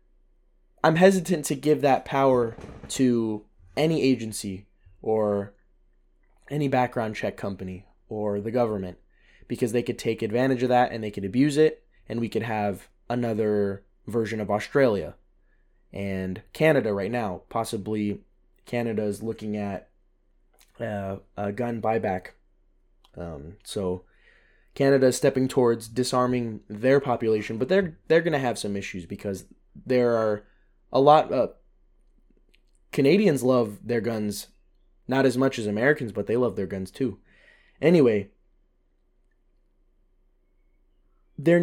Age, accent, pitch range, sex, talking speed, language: 20-39, American, 100-135 Hz, male, 130 wpm, English